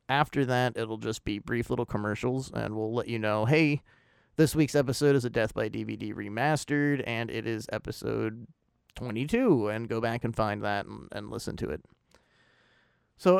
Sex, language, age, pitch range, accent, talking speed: male, English, 30-49, 110-135 Hz, American, 180 wpm